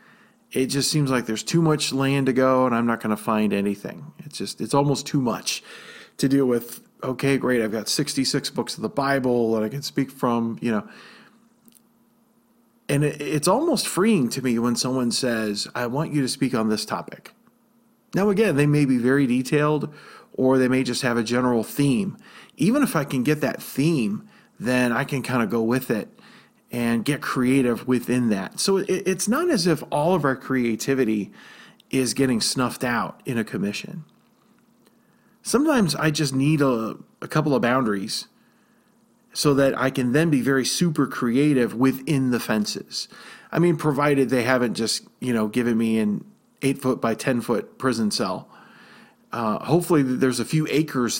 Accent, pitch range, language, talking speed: American, 120-160 Hz, English, 180 wpm